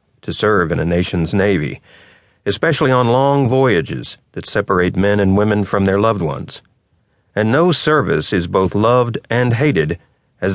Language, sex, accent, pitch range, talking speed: English, male, American, 95-130 Hz, 160 wpm